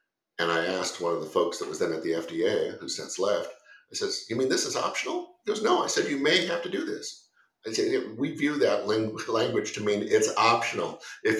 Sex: male